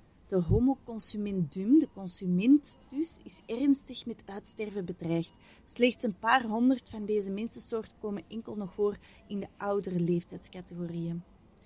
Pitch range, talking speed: 195-250 Hz, 130 wpm